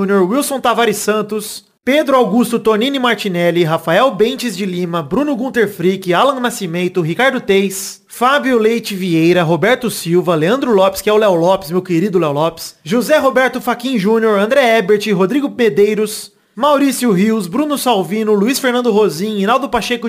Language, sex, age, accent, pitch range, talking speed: Portuguese, male, 30-49, Brazilian, 200-250 Hz, 155 wpm